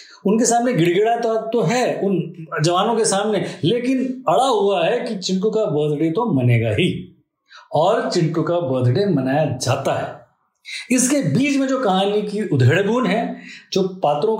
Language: Hindi